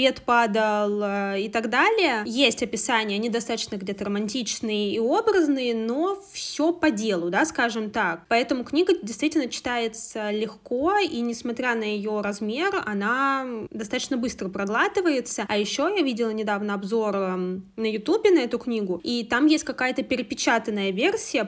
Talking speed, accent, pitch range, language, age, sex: 140 wpm, native, 220-265 Hz, Russian, 20-39, female